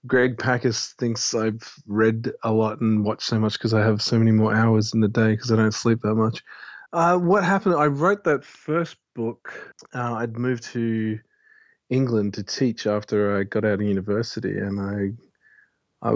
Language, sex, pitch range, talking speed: English, male, 110-120 Hz, 190 wpm